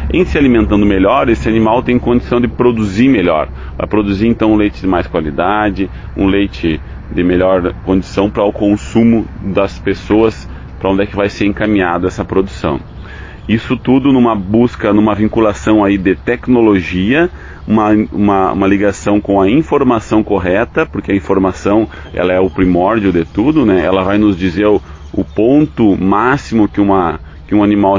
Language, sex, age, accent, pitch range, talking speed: Portuguese, male, 30-49, Brazilian, 90-115 Hz, 165 wpm